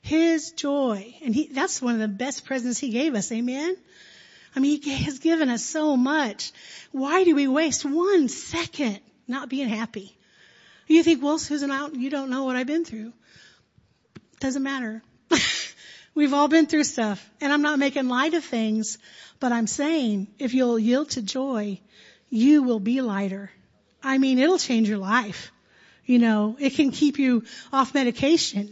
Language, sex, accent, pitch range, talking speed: English, female, American, 225-295 Hz, 170 wpm